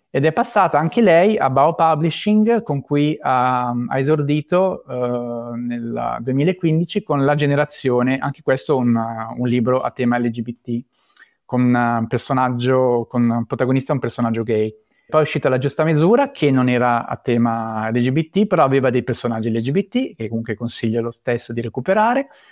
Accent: native